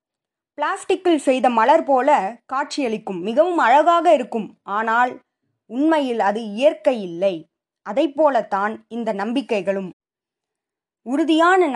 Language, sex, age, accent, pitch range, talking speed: Tamil, female, 20-39, native, 200-300 Hz, 85 wpm